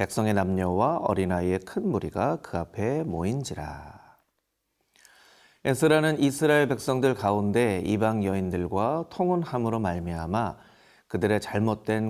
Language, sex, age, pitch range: Korean, male, 40-59, 95-140 Hz